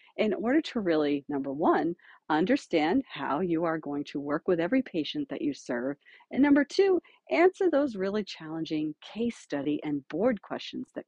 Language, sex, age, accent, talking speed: English, female, 50-69, American, 175 wpm